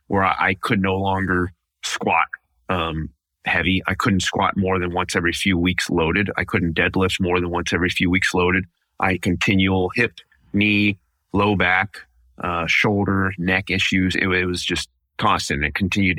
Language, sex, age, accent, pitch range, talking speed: English, male, 30-49, American, 80-95 Hz, 170 wpm